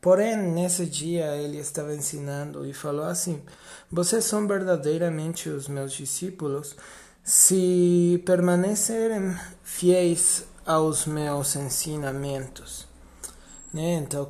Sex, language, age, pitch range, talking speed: male, Portuguese, 20-39, 140-175 Hz, 95 wpm